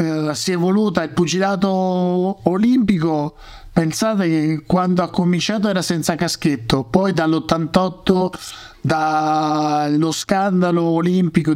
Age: 50-69